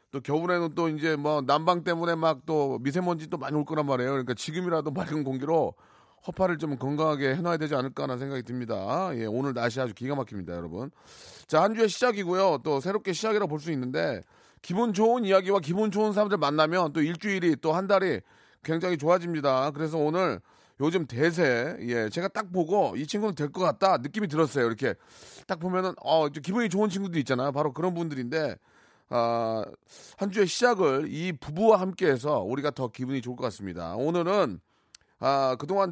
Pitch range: 135-180 Hz